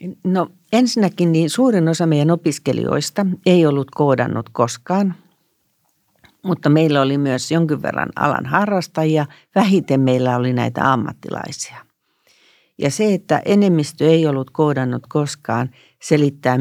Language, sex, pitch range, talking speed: Finnish, female, 140-175 Hz, 120 wpm